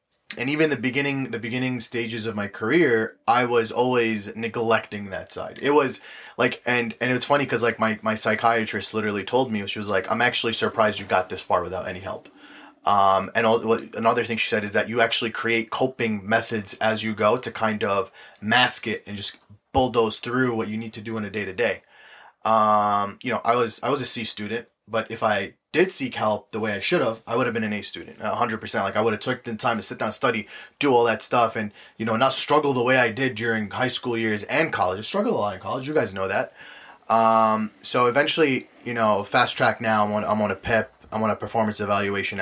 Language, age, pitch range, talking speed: English, 20-39, 105-120 Hz, 240 wpm